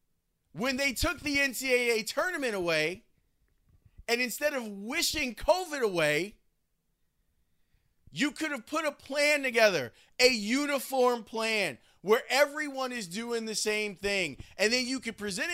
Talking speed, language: 135 wpm, English